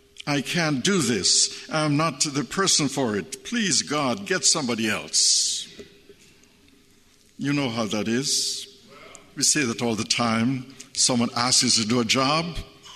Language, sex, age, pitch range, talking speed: English, male, 60-79, 120-180 Hz, 155 wpm